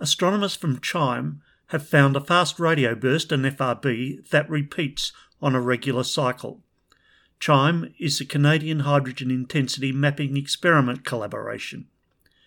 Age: 50-69